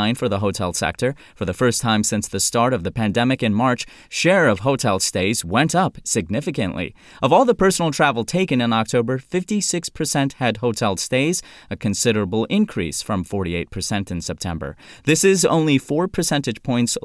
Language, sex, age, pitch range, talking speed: English, male, 30-49, 100-145 Hz, 170 wpm